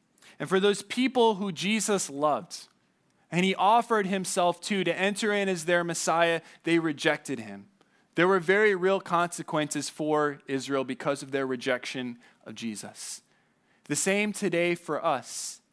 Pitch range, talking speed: 155-200 Hz, 150 wpm